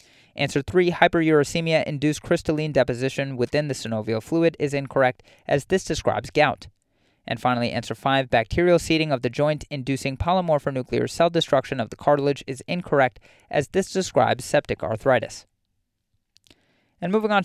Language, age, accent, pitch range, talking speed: English, 30-49, American, 120-170 Hz, 140 wpm